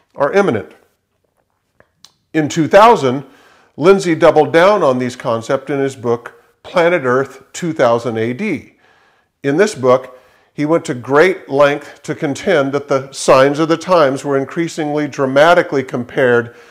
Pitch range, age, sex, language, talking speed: 130-170 Hz, 50-69, male, English, 135 wpm